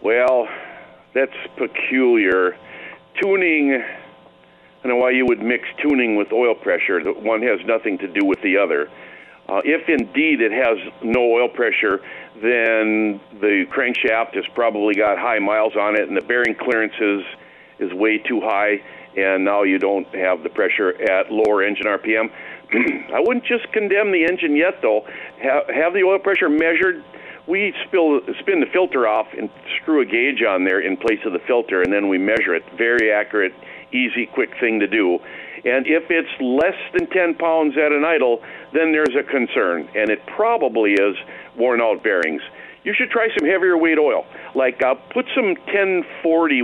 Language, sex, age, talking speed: English, male, 50-69, 175 wpm